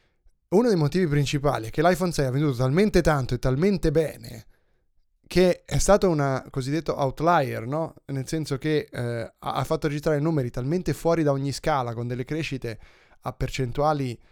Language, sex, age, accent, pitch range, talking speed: Italian, male, 20-39, native, 120-150 Hz, 170 wpm